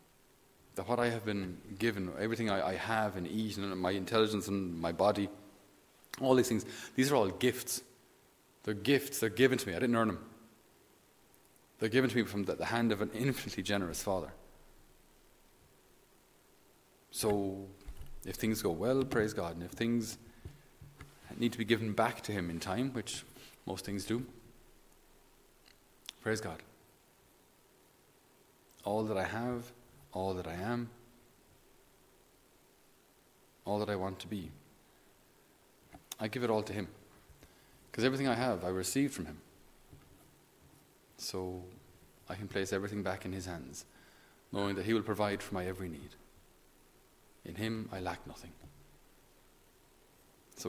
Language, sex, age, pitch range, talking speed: English, male, 30-49, 95-115 Hz, 145 wpm